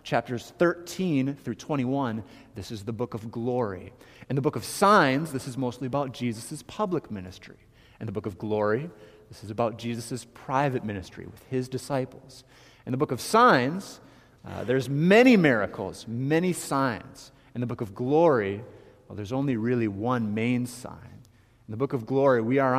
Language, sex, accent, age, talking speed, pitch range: English, male, American, 30-49, 175 wpm, 110-140 Hz